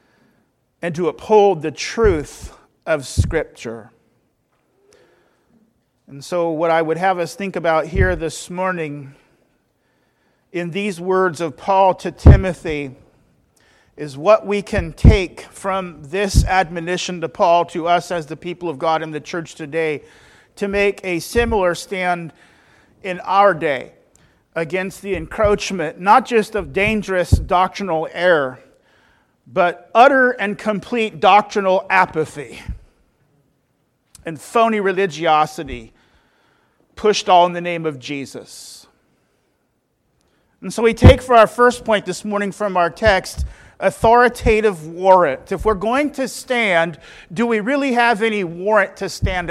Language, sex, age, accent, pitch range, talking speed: English, male, 40-59, American, 165-210 Hz, 130 wpm